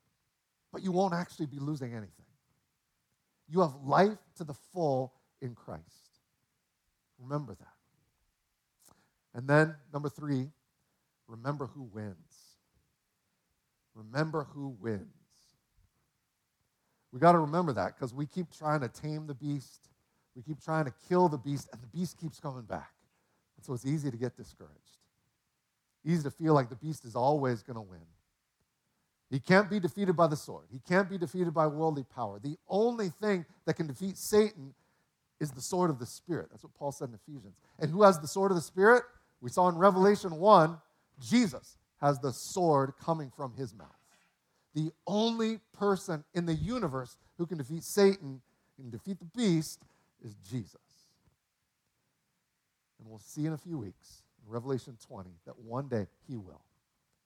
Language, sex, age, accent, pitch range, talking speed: English, male, 50-69, American, 125-175 Hz, 160 wpm